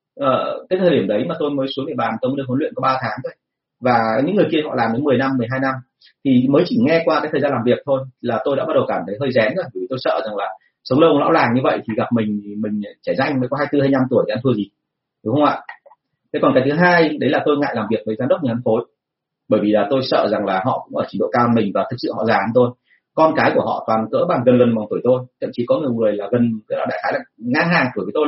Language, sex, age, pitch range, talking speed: Vietnamese, male, 30-49, 125-150 Hz, 310 wpm